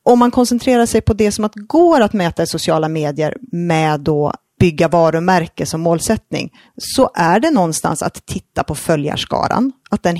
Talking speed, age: 175 wpm, 30-49